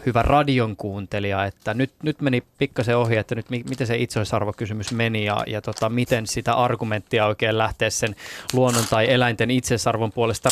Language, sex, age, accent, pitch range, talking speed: Finnish, male, 20-39, native, 110-135 Hz, 165 wpm